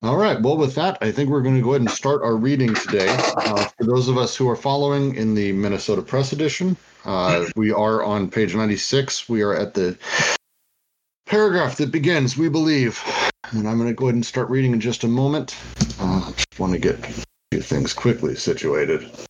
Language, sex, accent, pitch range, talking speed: English, male, American, 100-135 Hz, 210 wpm